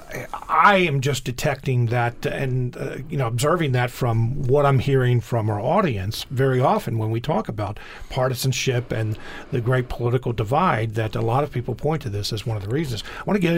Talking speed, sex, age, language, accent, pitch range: 210 wpm, male, 50-69, English, American, 120-150 Hz